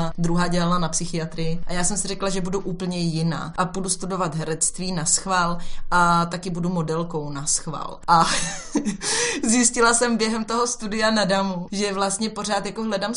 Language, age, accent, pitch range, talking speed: Czech, 20-39, native, 170-195 Hz, 175 wpm